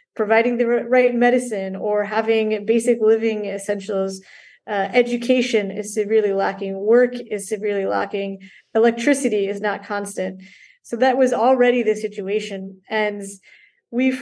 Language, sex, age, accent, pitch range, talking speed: English, female, 30-49, American, 205-240 Hz, 125 wpm